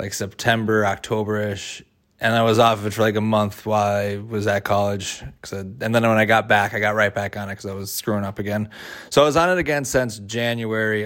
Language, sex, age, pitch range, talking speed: English, male, 20-39, 105-115 Hz, 240 wpm